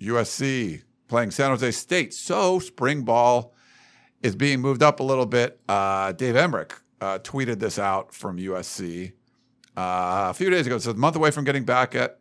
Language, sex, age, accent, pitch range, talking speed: English, male, 50-69, American, 110-135 Hz, 175 wpm